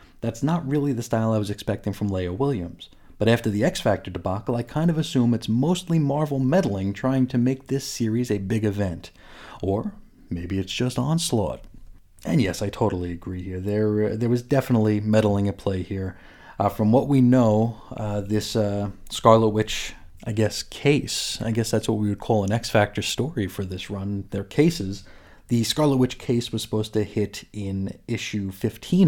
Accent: American